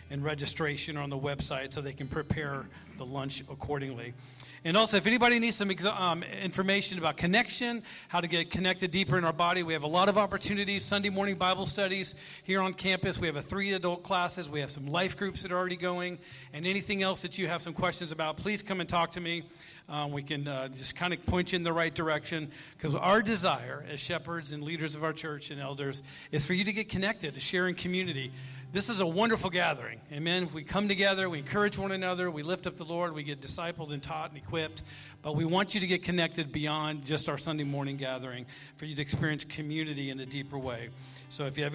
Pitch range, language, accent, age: 145-185 Hz, English, American, 40-59